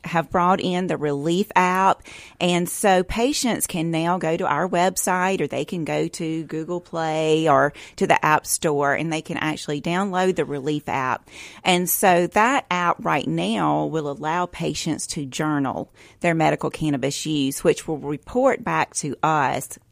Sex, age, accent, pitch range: female, 40-59, American, 145-180 Hz